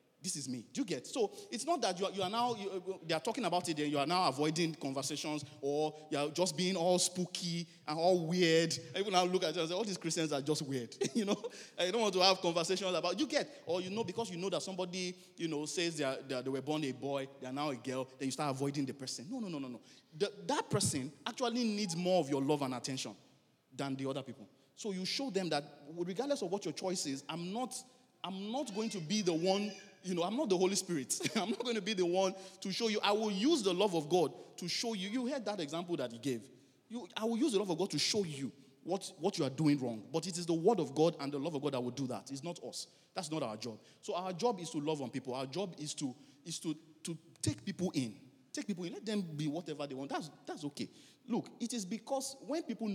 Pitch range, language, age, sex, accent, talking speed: 145-200 Hz, English, 30-49, male, Nigerian, 280 wpm